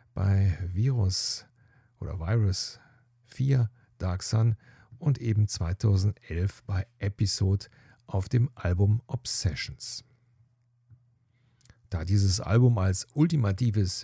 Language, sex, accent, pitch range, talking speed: German, male, German, 95-120 Hz, 90 wpm